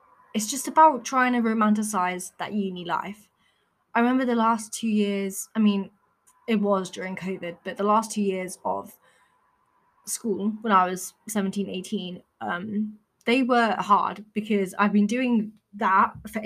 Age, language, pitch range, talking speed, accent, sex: 20-39, English, 195-230 Hz, 155 wpm, British, female